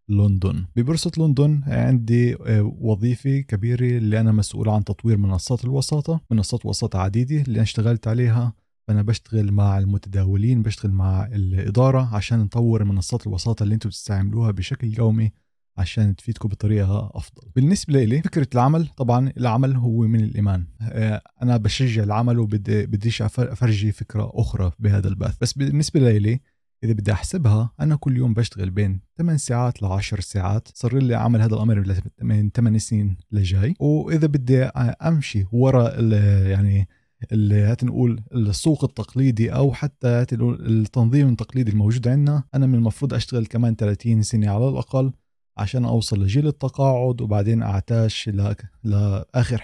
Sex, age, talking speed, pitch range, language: male, 20-39, 140 wpm, 105-125 Hz, Arabic